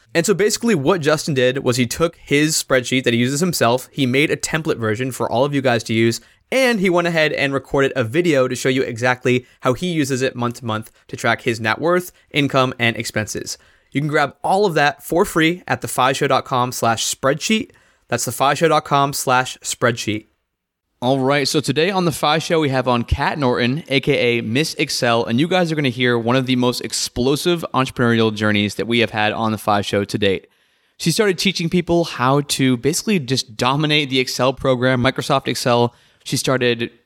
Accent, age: American, 20-39